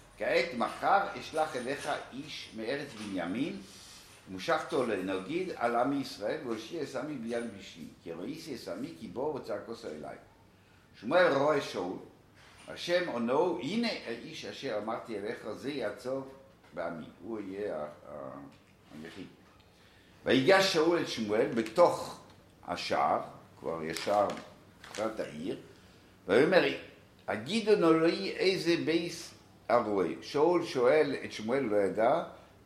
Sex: male